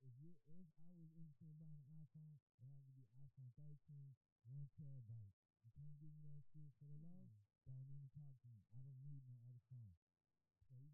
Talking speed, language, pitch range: 215 wpm, English, 110-140 Hz